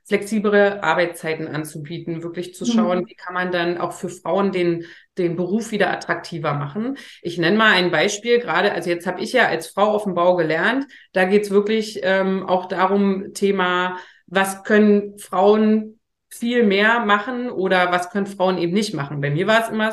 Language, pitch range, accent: German, 175-210 Hz, German